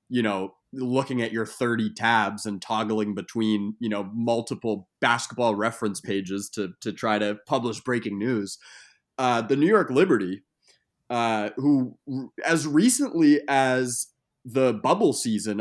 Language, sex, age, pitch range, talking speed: English, male, 20-39, 110-140 Hz, 140 wpm